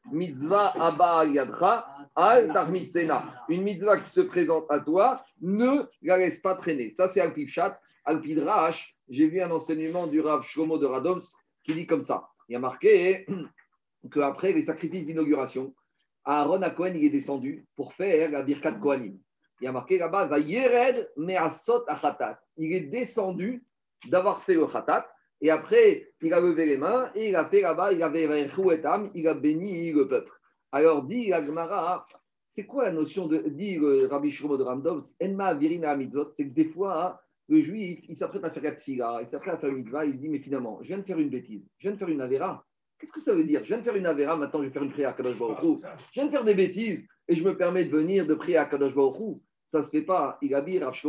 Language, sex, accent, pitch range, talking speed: French, male, French, 145-205 Hz, 210 wpm